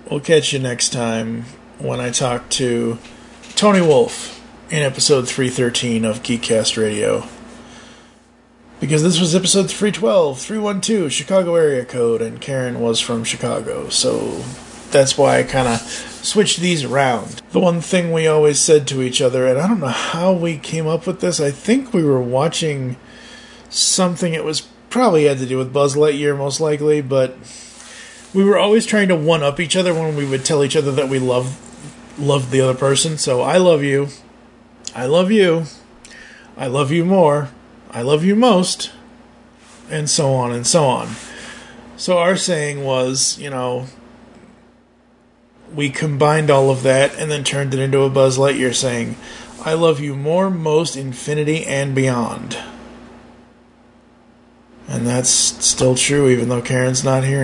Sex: male